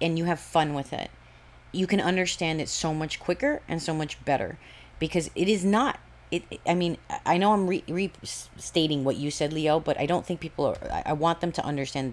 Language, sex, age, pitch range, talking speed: English, female, 30-49, 150-195 Hz, 220 wpm